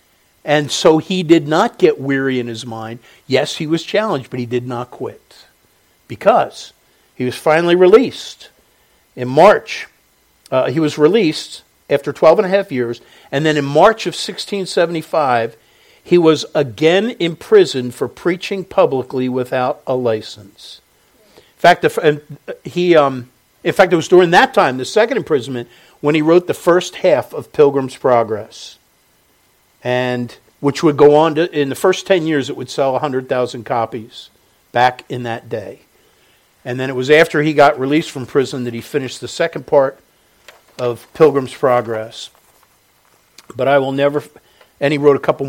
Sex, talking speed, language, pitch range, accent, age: male, 165 wpm, English, 125-160 Hz, American, 50-69